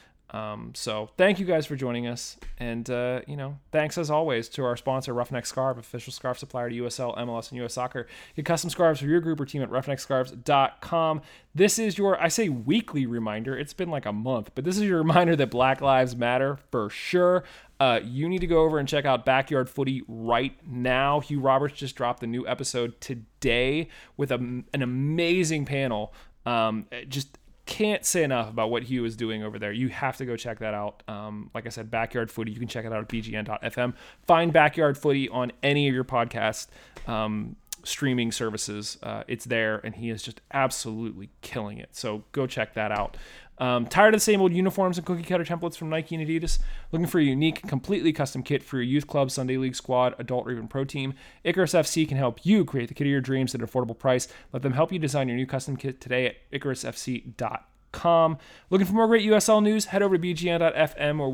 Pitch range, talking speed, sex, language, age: 120-155 Hz, 215 wpm, male, English, 30-49